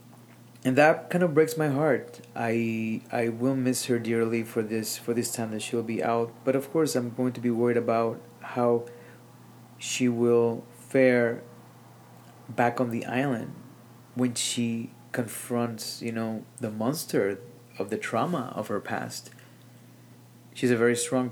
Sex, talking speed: male, 160 wpm